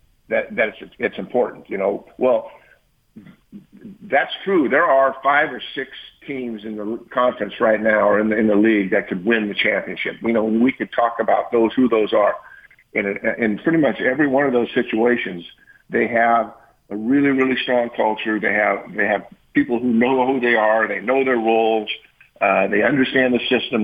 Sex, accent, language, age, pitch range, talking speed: male, American, English, 50-69, 110-135 Hz, 195 wpm